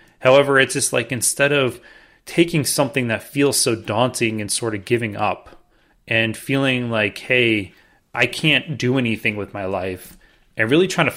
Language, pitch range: English, 110-130 Hz